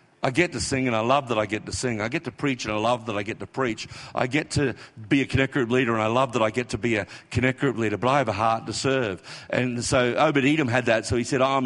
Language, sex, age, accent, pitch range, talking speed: English, male, 50-69, Australian, 135-180 Hz, 310 wpm